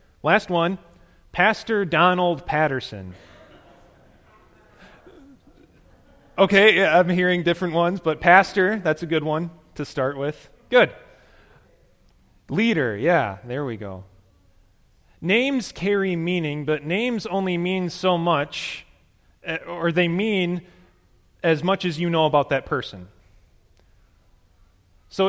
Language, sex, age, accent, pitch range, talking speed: English, male, 30-49, American, 115-180 Hz, 110 wpm